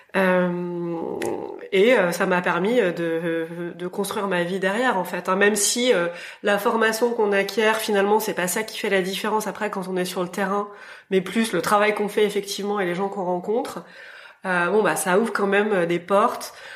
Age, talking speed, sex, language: 20-39, 210 wpm, female, French